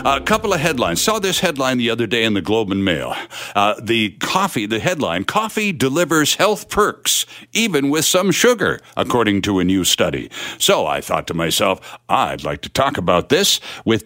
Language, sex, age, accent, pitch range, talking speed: English, male, 60-79, American, 125-200 Hz, 190 wpm